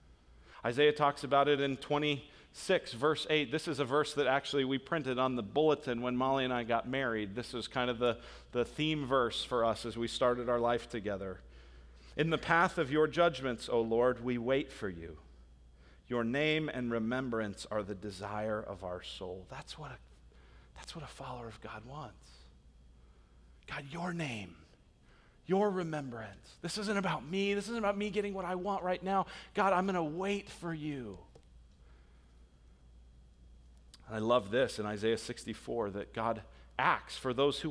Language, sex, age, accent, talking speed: English, male, 40-59, American, 175 wpm